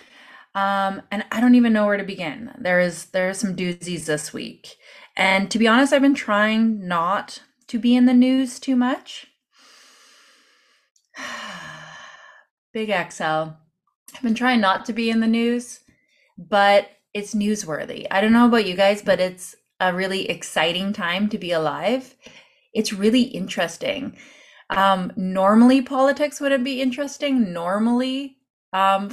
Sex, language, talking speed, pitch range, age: female, English, 150 wpm, 180-240 Hz, 30-49